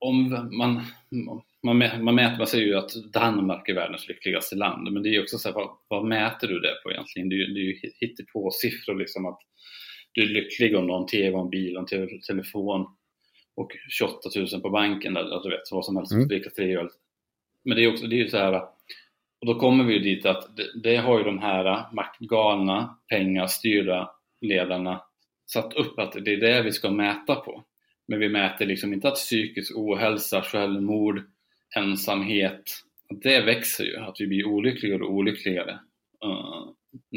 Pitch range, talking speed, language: 95-110 Hz, 190 wpm, Swedish